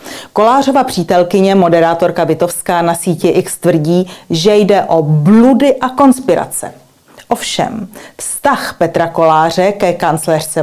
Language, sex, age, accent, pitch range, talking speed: Czech, female, 40-59, native, 170-210 Hz, 115 wpm